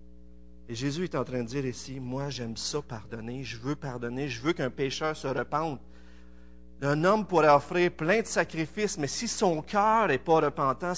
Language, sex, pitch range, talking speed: French, male, 115-155 Hz, 190 wpm